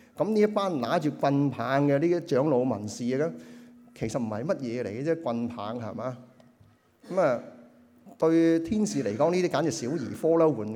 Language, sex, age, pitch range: Chinese, male, 30-49, 120-175 Hz